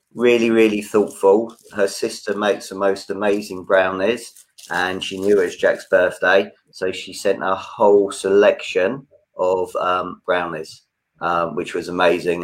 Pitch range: 90-110 Hz